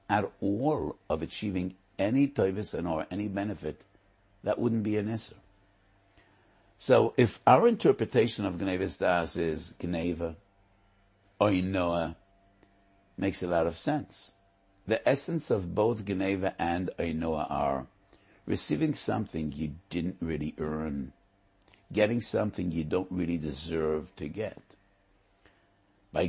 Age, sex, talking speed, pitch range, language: 60-79, male, 120 wpm, 85-100 Hz, English